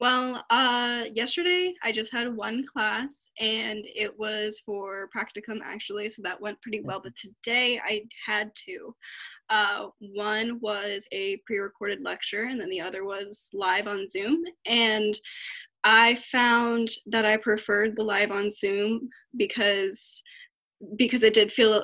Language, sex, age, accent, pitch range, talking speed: English, female, 10-29, American, 210-245 Hz, 145 wpm